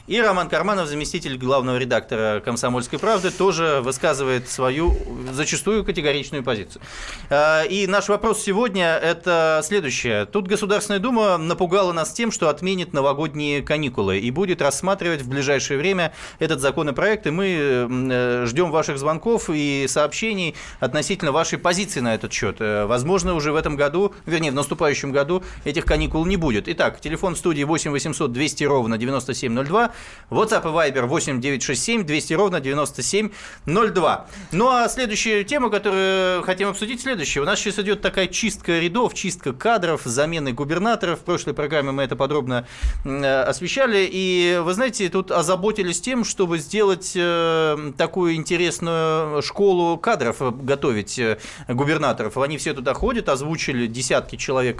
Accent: native